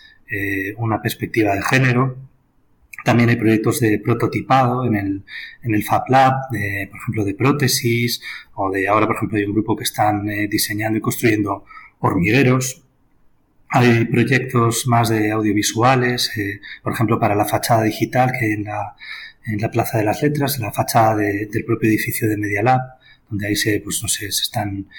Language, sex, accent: Spanish, male, Spanish